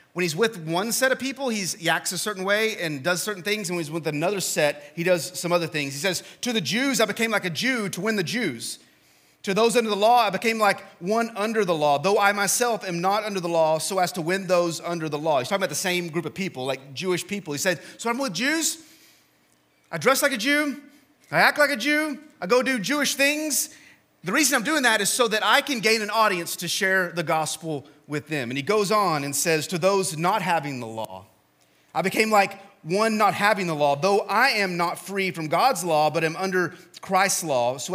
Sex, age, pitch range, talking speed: male, 30-49, 155-215 Hz, 245 wpm